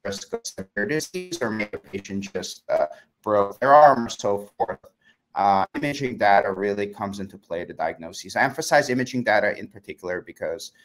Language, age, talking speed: English, 30-49, 175 wpm